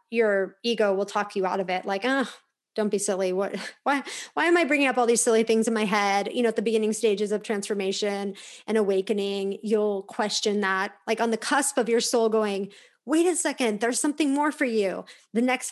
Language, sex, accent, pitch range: English, female, American, 200-250 Hz